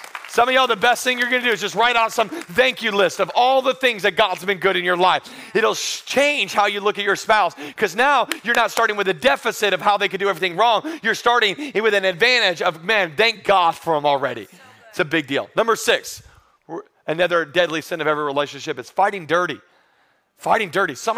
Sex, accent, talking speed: male, American, 230 wpm